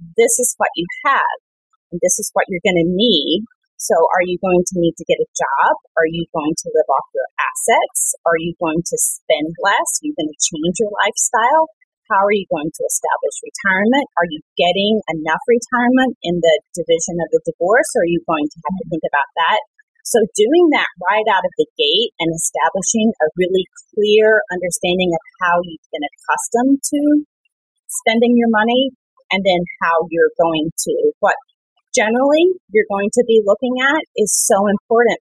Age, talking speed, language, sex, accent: 30-49, 190 wpm, English, female, American